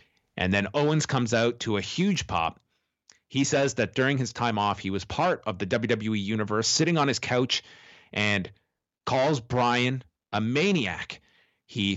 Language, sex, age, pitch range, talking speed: English, male, 30-49, 105-140 Hz, 165 wpm